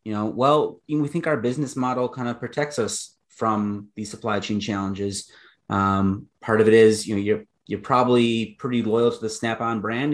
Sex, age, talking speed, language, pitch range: male, 30-49, 215 wpm, English, 105-120 Hz